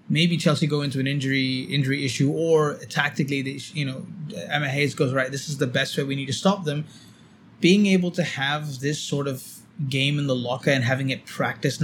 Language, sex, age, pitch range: English, male, 20-39, 130-150 Hz